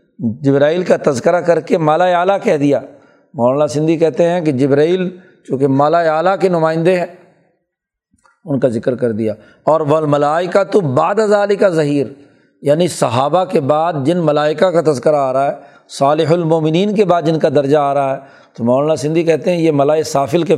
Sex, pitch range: male, 145-180 Hz